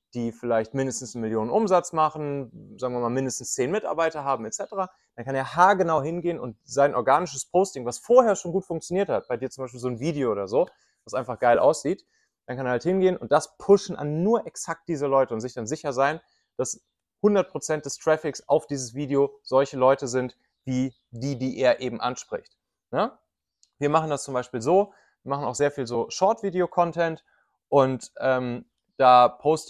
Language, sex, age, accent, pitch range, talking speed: German, male, 30-49, German, 115-155 Hz, 190 wpm